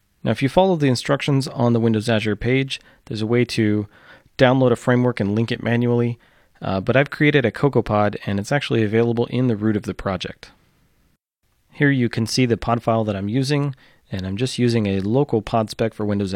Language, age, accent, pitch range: English, 30-49, American, 105-130 Hz